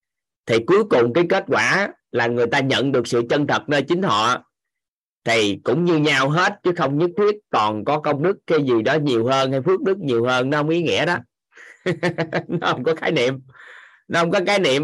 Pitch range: 130-175 Hz